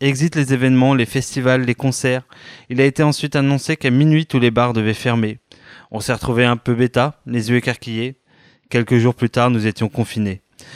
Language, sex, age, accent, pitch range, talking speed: French, male, 20-39, French, 115-140 Hz, 195 wpm